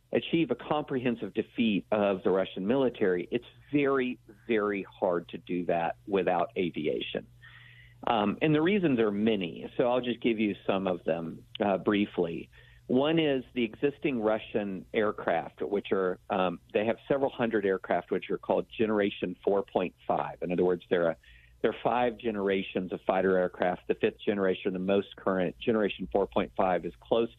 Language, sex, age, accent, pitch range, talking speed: English, male, 50-69, American, 95-120 Hz, 160 wpm